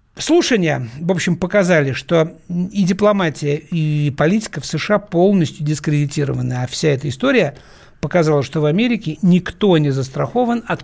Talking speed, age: 140 wpm, 60-79